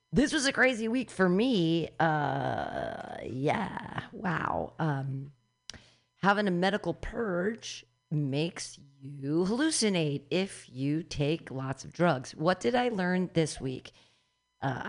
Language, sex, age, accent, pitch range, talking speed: English, female, 40-59, American, 145-210 Hz, 125 wpm